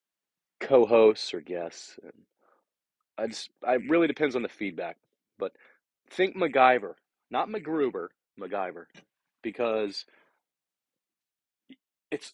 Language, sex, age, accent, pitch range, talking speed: English, male, 30-49, American, 105-135 Hz, 90 wpm